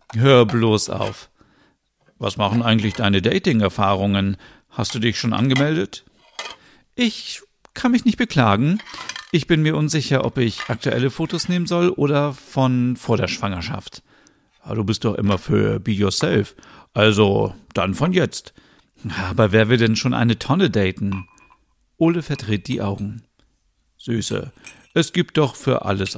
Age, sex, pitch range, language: 50-69, male, 105-160 Hz, German